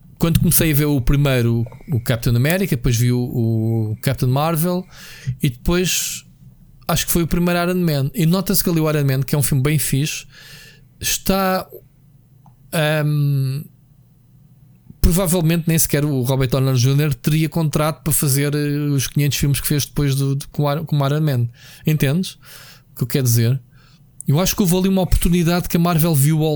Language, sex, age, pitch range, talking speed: Portuguese, male, 20-39, 125-150 Hz, 180 wpm